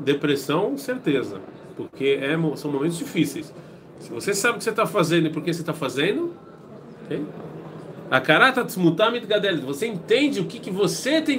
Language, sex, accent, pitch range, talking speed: Portuguese, male, Brazilian, 150-185 Hz, 155 wpm